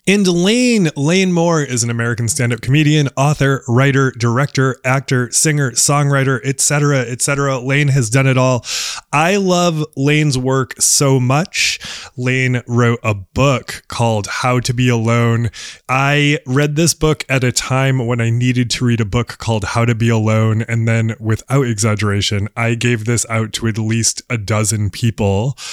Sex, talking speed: male, 170 wpm